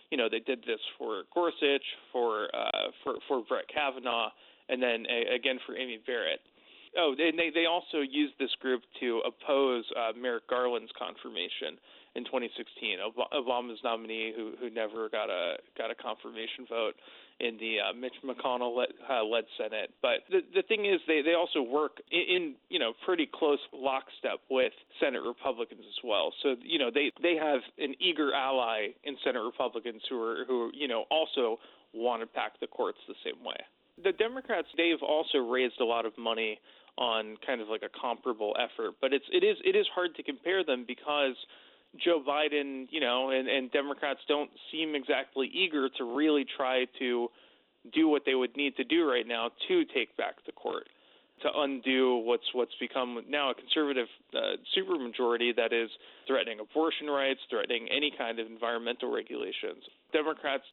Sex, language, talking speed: male, English, 180 wpm